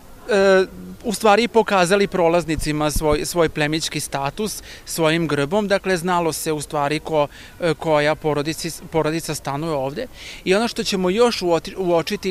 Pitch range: 150-180 Hz